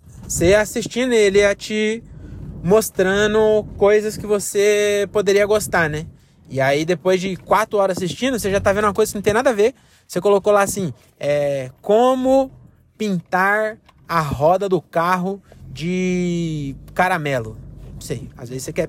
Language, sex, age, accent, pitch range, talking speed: Portuguese, male, 20-39, Brazilian, 160-220 Hz, 160 wpm